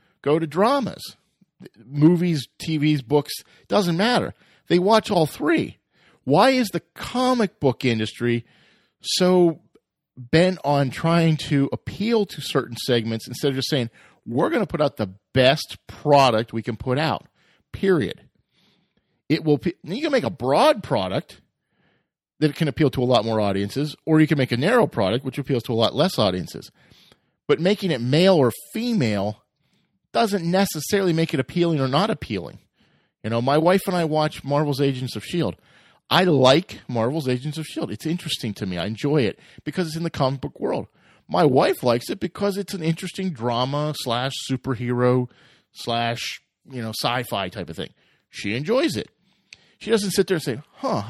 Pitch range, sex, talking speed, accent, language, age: 125-175 Hz, male, 175 wpm, American, English, 40-59